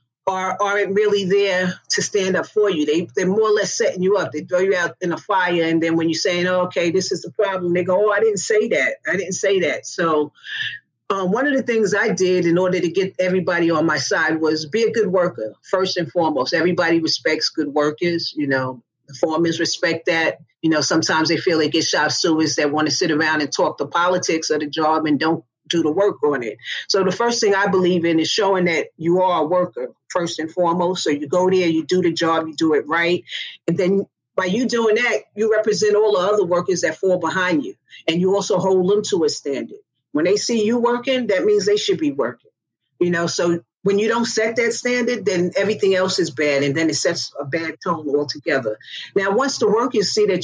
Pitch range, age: 165-210 Hz, 40-59